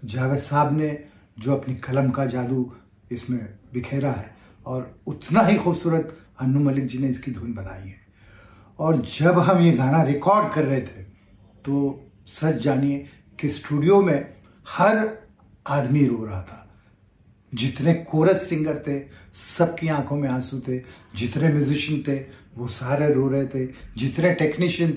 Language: Hindi